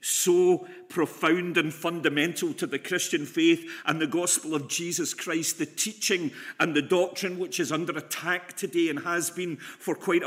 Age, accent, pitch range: 50-69, British, 175-205 Hz